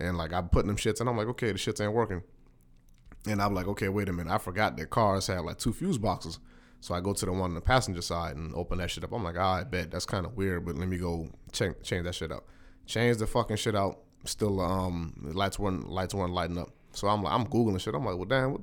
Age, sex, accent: 20-39, male, American